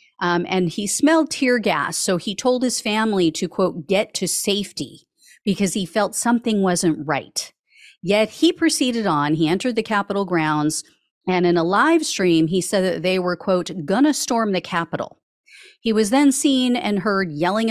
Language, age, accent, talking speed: English, 40-59, American, 185 wpm